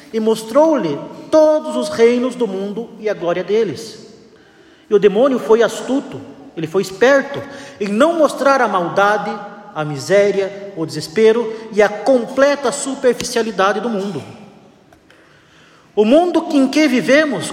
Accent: Brazilian